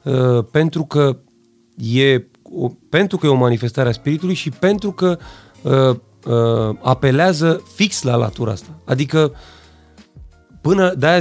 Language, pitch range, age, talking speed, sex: Romanian, 120-185 Hz, 30-49, 135 wpm, male